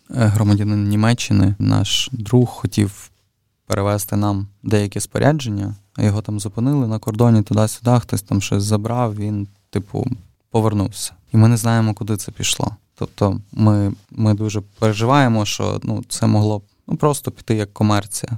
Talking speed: 145 wpm